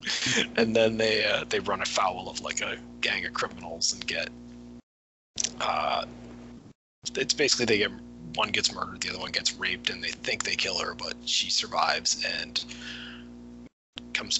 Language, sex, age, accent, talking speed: English, male, 20-39, American, 165 wpm